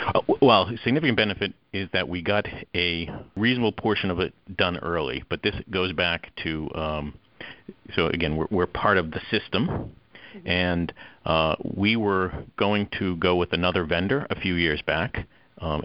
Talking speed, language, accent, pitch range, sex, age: 170 wpm, English, American, 80-95 Hz, male, 50-69